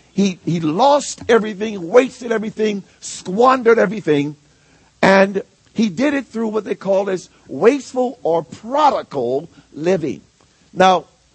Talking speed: 115 wpm